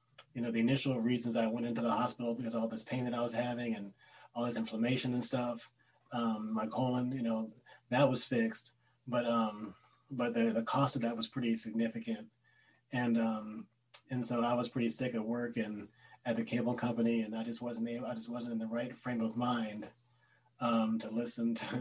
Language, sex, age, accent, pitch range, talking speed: English, male, 30-49, American, 115-125 Hz, 210 wpm